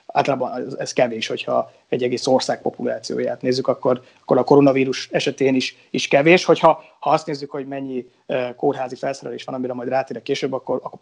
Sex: male